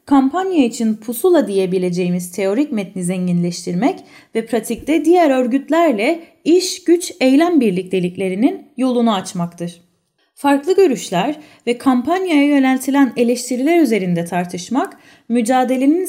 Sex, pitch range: female, 205-300 Hz